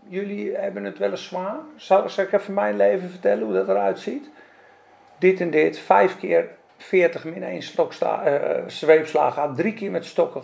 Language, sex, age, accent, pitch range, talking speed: Dutch, male, 50-69, Dutch, 170-245 Hz, 180 wpm